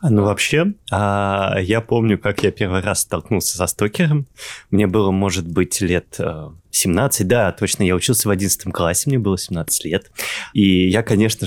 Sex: male